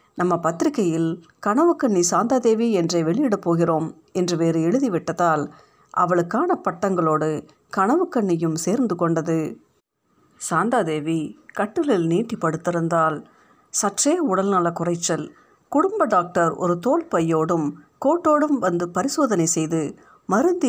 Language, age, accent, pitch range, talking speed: Tamil, 50-69, native, 165-245 Hz, 95 wpm